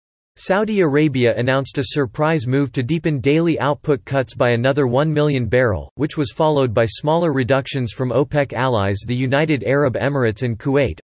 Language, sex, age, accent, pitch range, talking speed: English, male, 40-59, American, 120-150 Hz, 170 wpm